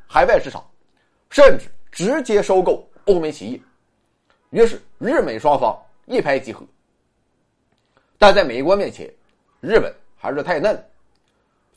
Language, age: Chinese, 30-49